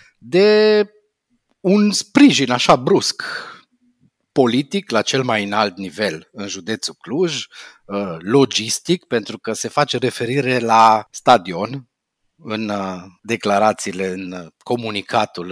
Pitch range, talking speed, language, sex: 110-175 Hz, 100 wpm, Romanian, male